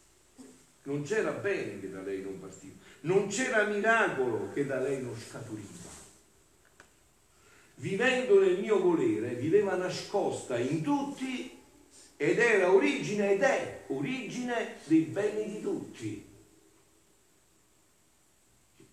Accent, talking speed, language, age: native, 110 wpm, Italian, 50-69